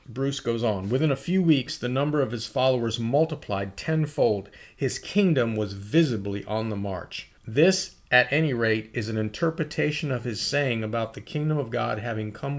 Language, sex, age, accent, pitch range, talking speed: English, male, 40-59, American, 105-145 Hz, 180 wpm